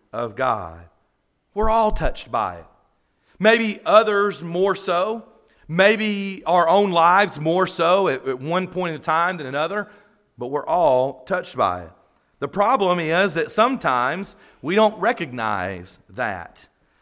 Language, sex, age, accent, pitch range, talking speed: English, male, 40-59, American, 155-210 Hz, 140 wpm